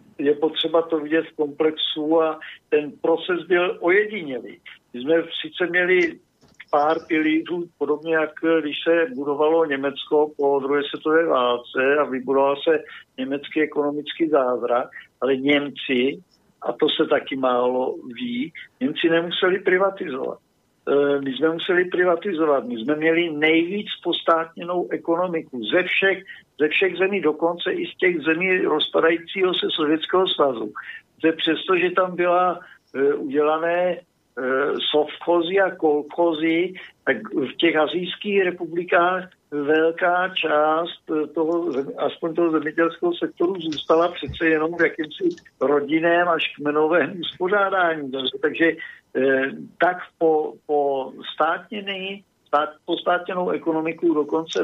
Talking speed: 115 wpm